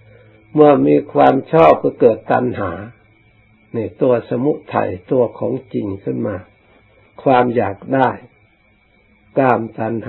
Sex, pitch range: male, 100-115 Hz